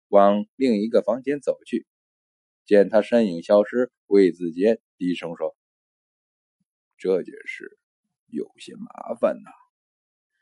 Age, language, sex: 20-39, Chinese, male